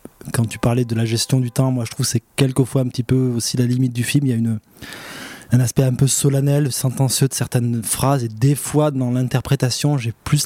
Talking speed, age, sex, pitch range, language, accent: 240 wpm, 20-39, male, 120-140 Hz, French, French